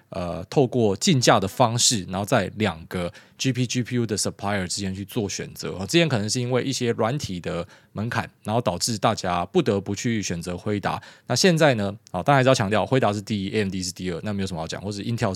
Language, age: Chinese, 20-39